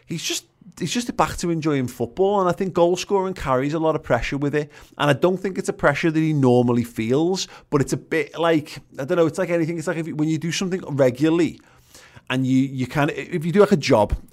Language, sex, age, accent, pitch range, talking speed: English, male, 30-49, British, 115-150 Hz, 265 wpm